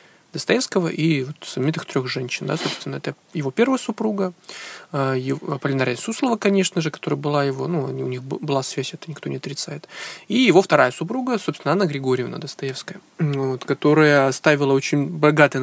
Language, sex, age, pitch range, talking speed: Russian, male, 20-39, 135-175 Hz, 165 wpm